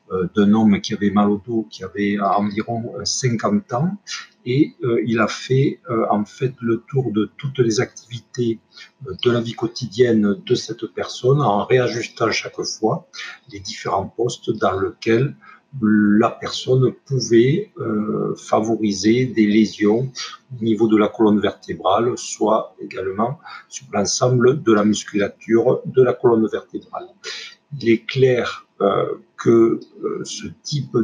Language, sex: French, male